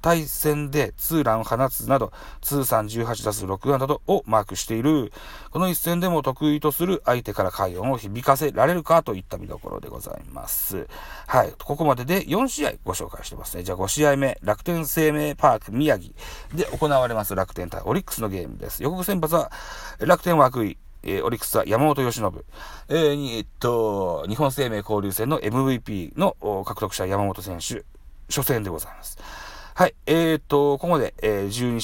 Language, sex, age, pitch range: Japanese, male, 40-59, 105-145 Hz